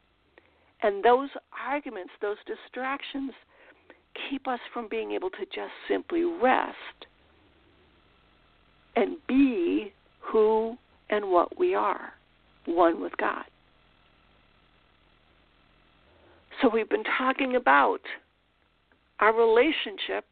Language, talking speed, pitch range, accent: English, 90 wpm, 230-370 Hz, American